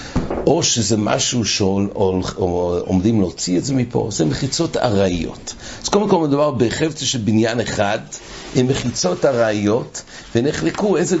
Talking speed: 135 wpm